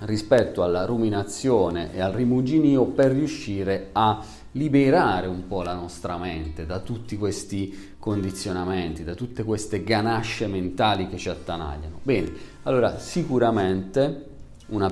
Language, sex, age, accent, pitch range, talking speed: Italian, male, 40-59, native, 90-115 Hz, 125 wpm